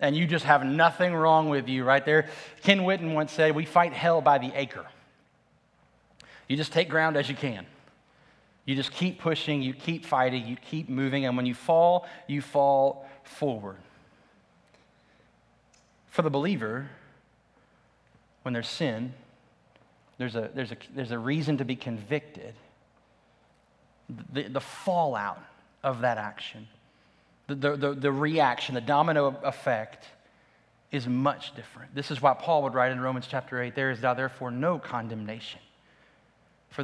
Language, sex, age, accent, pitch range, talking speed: English, male, 30-49, American, 120-145 Hz, 150 wpm